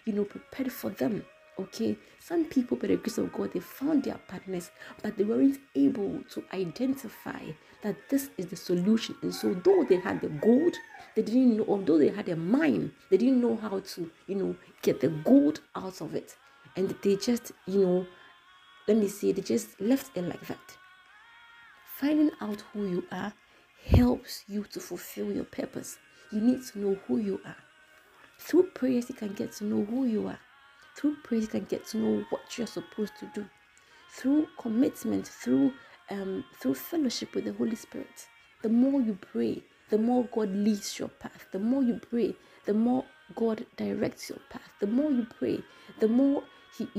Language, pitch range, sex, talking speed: English, 200-270 Hz, female, 190 wpm